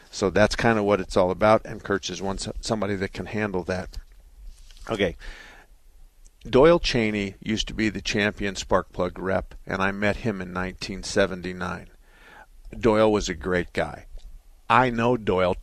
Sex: male